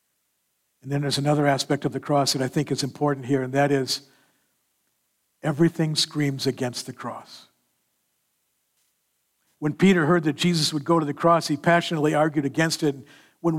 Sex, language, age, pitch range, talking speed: male, English, 60-79, 140-180 Hz, 170 wpm